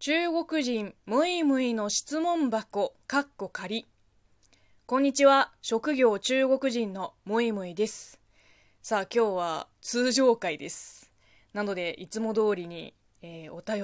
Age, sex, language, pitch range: 20-39, female, Japanese, 180-295 Hz